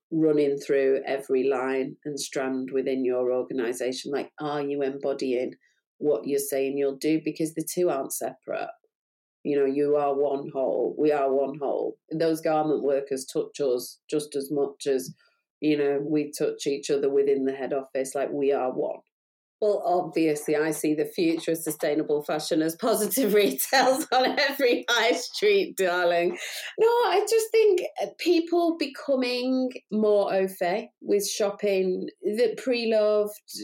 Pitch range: 150-235 Hz